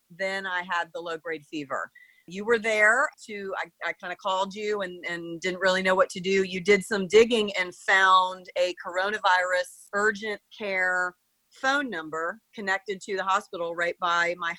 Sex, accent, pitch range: female, American, 180-215 Hz